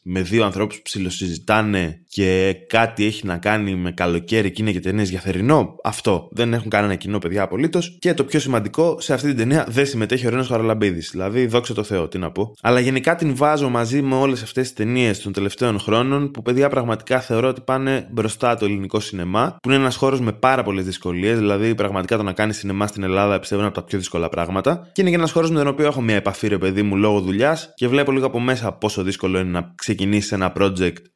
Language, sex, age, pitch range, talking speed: Greek, male, 20-39, 95-125 Hz, 225 wpm